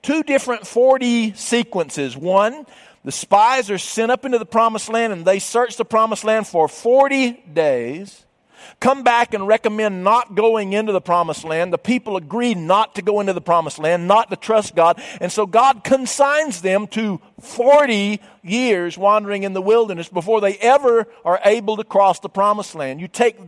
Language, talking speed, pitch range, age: English, 180 wpm, 195-245 Hz, 50-69